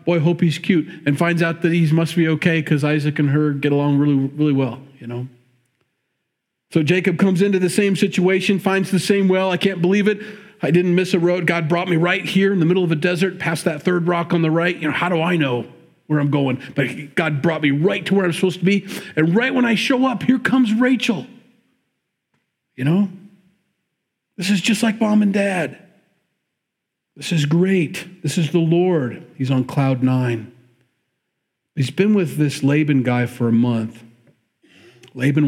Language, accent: English, American